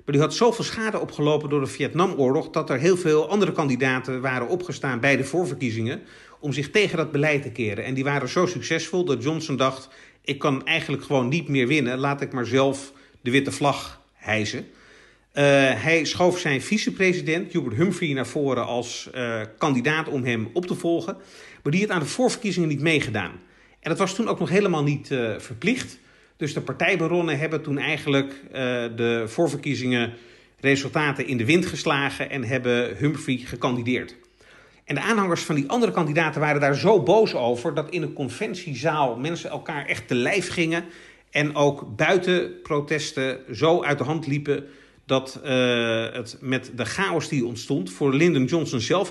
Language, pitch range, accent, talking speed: Dutch, 130-165 Hz, Dutch, 175 wpm